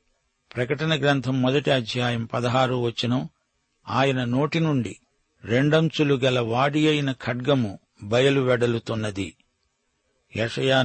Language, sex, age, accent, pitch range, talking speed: Telugu, male, 50-69, native, 120-145 Hz, 90 wpm